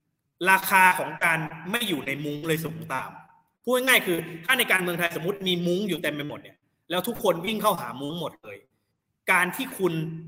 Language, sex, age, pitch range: Thai, male, 20-39, 155-195 Hz